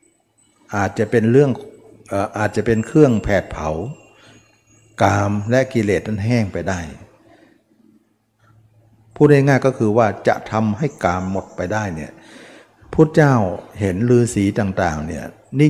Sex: male